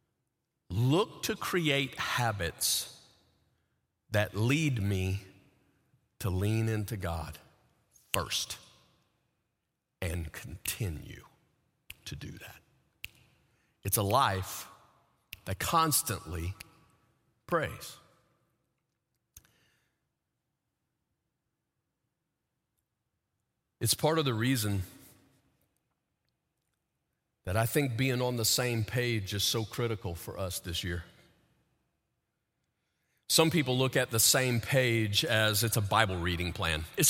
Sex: male